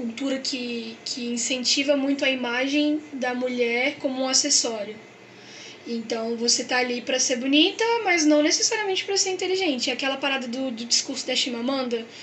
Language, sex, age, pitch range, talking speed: Portuguese, female, 10-29, 250-295 Hz, 155 wpm